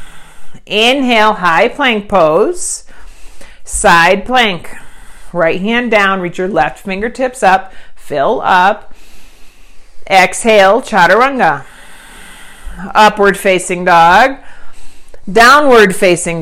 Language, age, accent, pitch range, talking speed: English, 40-59, American, 185-225 Hz, 85 wpm